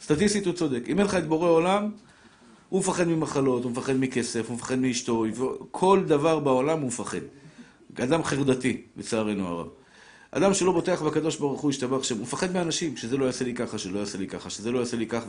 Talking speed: 210 wpm